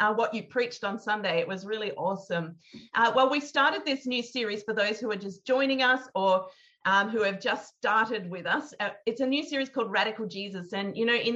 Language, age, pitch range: English, 40-59, 190-235 Hz